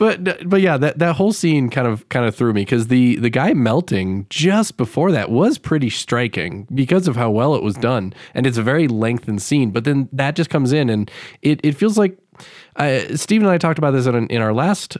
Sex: male